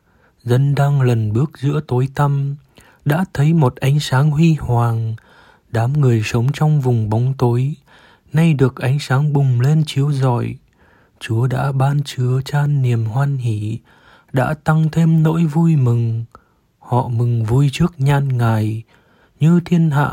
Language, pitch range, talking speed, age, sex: Vietnamese, 120-145 Hz, 155 wpm, 20-39, male